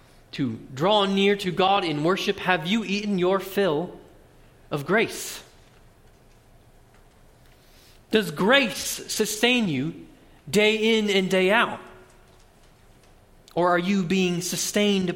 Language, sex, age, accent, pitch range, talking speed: English, male, 40-59, American, 130-200 Hz, 110 wpm